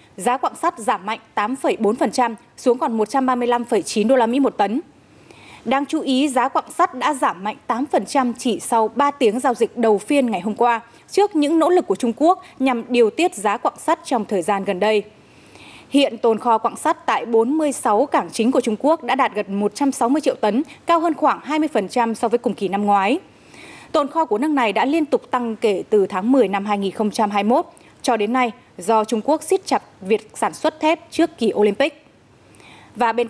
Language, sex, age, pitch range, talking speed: Vietnamese, female, 20-39, 215-280 Hz, 205 wpm